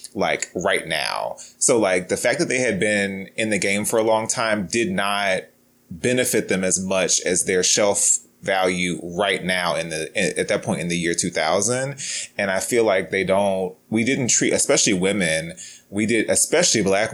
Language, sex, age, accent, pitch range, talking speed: English, male, 30-49, American, 90-110 Hz, 190 wpm